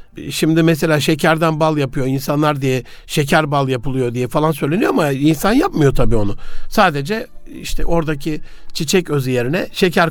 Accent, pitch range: native, 150-195 Hz